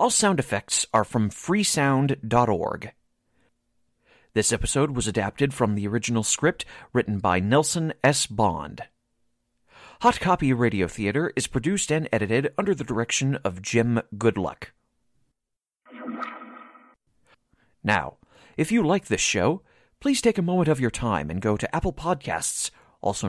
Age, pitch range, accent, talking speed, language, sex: 40-59, 110-165 Hz, American, 135 wpm, English, male